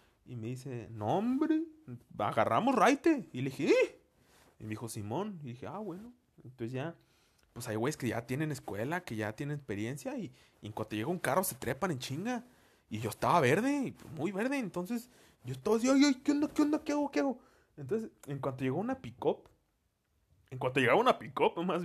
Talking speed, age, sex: 205 wpm, 30-49, male